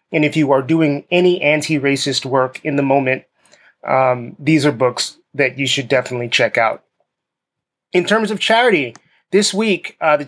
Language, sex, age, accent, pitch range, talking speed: English, male, 30-49, American, 140-165 Hz, 170 wpm